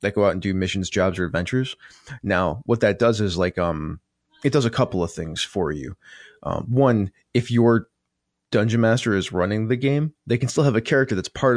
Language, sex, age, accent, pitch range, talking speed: English, male, 20-39, American, 90-120 Hz, 220 wpm